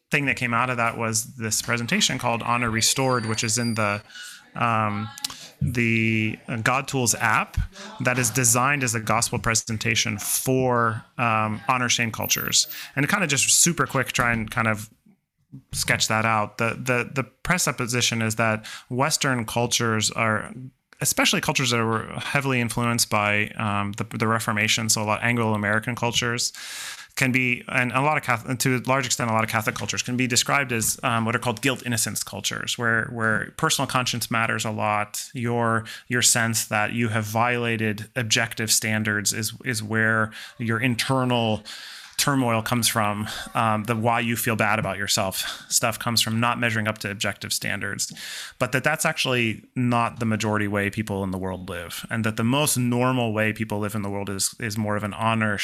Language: English